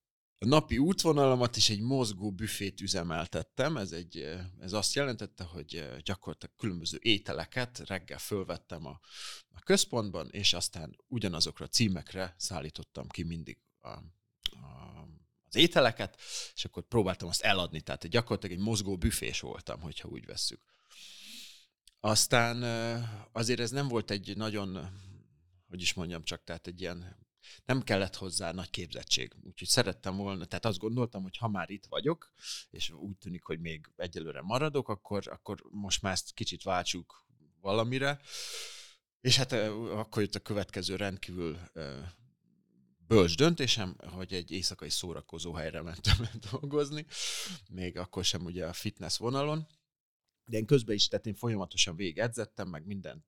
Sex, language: male, Hungarian